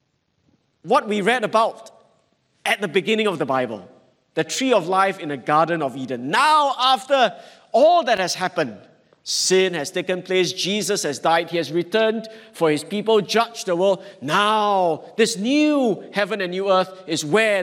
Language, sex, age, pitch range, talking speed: English, male, 50-69, 155-220 Hz, 170 wpm